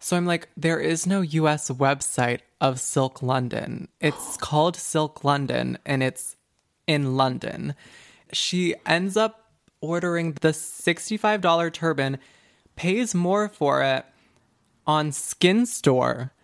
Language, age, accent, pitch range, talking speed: English, 20-39, American, 130-160 Hz, 120 wpm